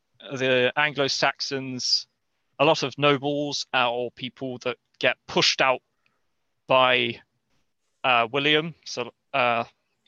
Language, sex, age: English, male, 20-39